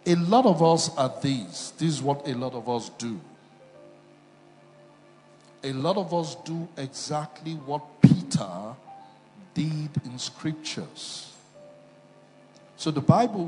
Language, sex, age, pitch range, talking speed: English, male, 60-79, 140-175 Hz, 125 wpm